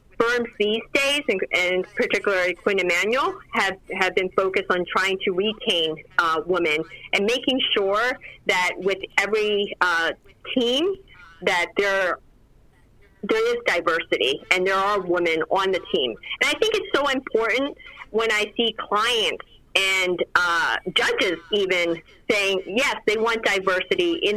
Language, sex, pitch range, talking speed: English, female, 185-245 Hz, 140 wpm